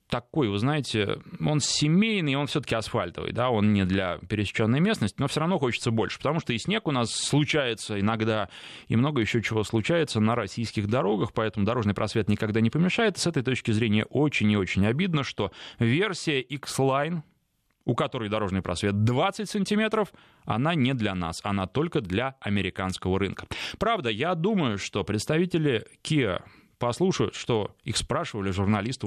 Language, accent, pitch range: Russian, native, 100-145 Hz